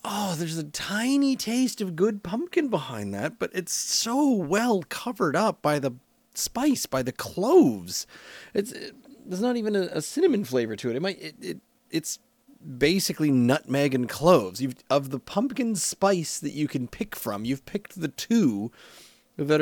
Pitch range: 125-205 Hz